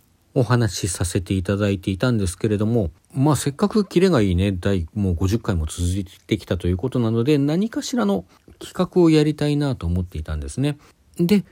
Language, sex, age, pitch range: Japanese, male, 40-59, 90-150 Hz